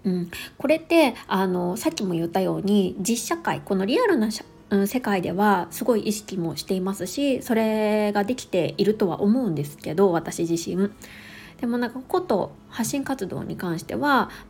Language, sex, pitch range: Japanese, female, 180-255 Hz